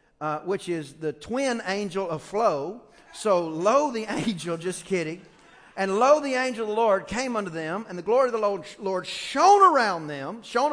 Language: English